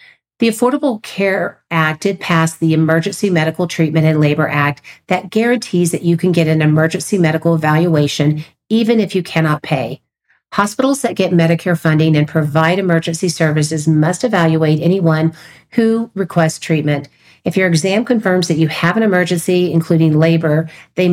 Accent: American